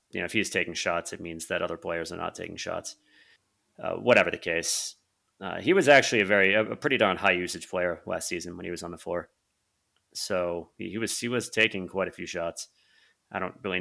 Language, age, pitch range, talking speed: English, 30-49, 85-95 Hz, 225 wpm